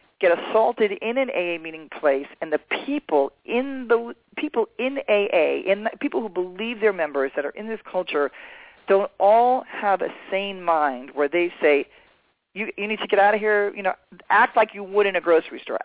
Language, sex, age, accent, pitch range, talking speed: English, male, 40-59, American, 145-205 Hz, 205 wpm